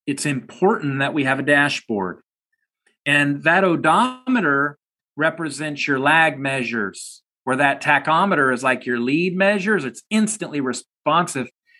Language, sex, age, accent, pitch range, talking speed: English, male, 40-59, American, 130-195 Hz, 125 wpm